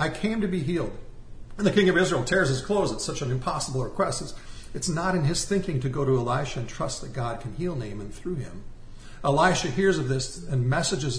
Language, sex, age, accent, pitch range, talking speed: English, male, 50-69, American, 125-180 Hz, 225 wpm